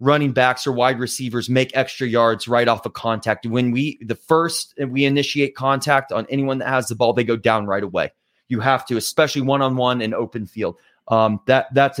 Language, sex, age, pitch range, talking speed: English, male, 30-49, 135-200 Hz, 205 wpm